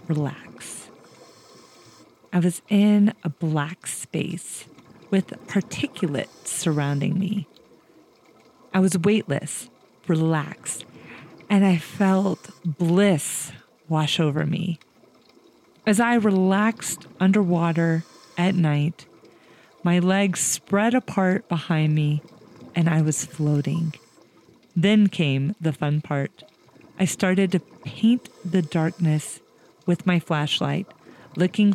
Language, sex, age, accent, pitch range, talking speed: English, female, 30-49, American, 160-200 Hz, 100 wpm